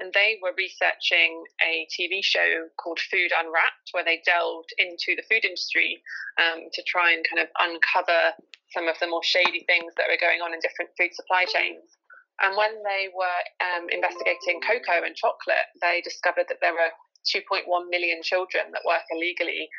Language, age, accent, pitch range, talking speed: English, 20-39, British, 170-195 Hz, 180 wpm